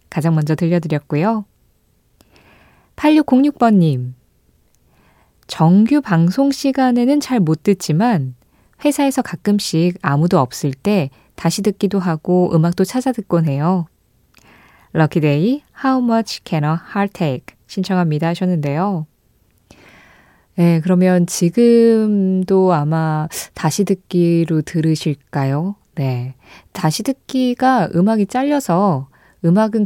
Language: Korean